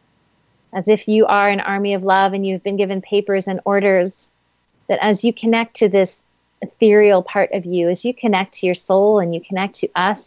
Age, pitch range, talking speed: 30-49, 185-215 Hz, 210 wpm